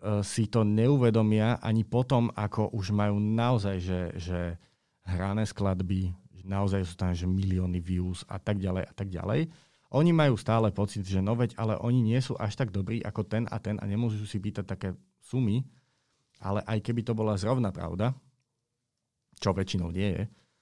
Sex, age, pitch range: male, 40-59, 95-115 Hz